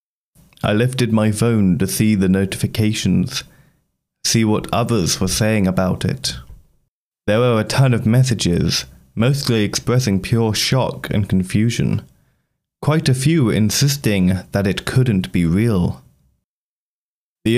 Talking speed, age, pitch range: 125 wpm, 30-49, 95-120 Hz